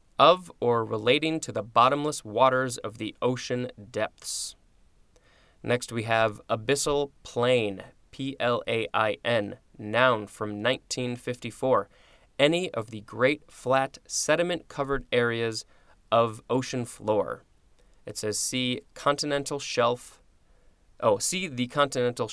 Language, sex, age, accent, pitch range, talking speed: English, male, 20-39, American, 110-140 Hz, 110 wpm